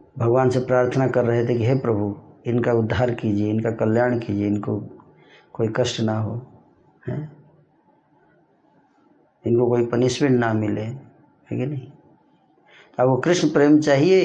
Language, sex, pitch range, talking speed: Hindi, male, 110-130 Hz, 145 wpm